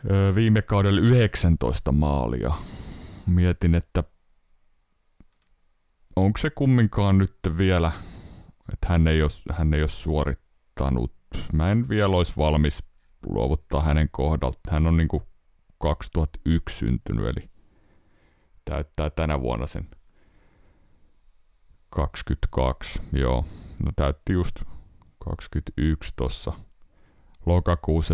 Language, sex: Finnish, male